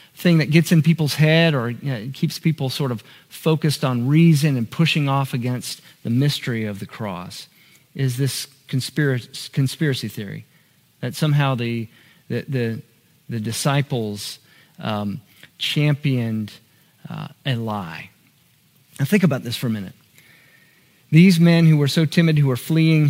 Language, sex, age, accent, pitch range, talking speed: English, male, 40-59, American, 120-155 Hz, 150 wpm